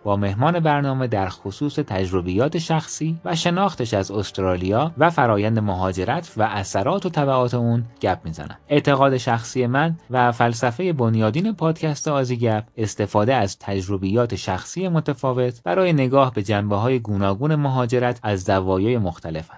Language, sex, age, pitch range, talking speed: Persian, male, 30-49, 100-150 Hz, 135 wpm